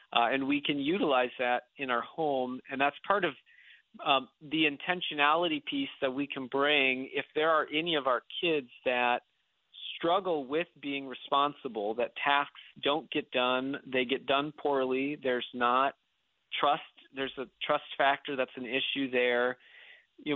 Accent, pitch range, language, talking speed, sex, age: American, 125-150 Hz, English, 160 wpm, male, 40-59